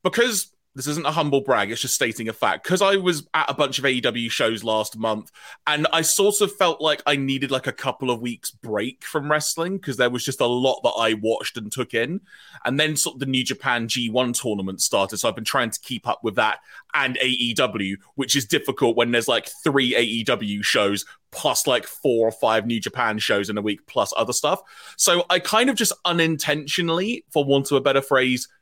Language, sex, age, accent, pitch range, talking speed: English, male, 30-49, British, 125-190 Hz, 220 wpm